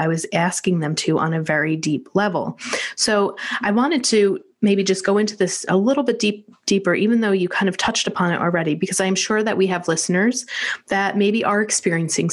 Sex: female